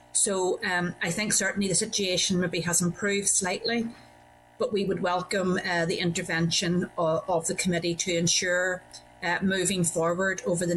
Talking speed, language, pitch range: 160 wpm, English, 165-175 Hz